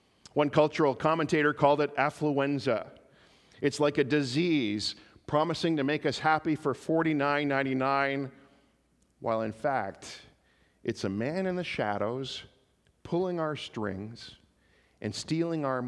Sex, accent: male, American